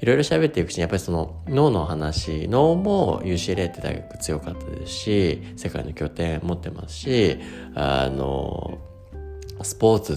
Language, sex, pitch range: Japanese, male, 80-105 Hz